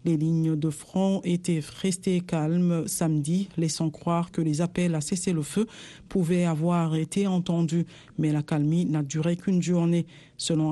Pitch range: 160-180 Hz